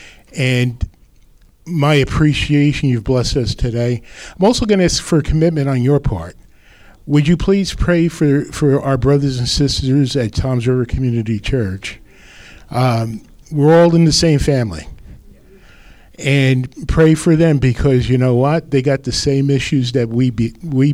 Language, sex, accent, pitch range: English, male, American, 115-150 Hz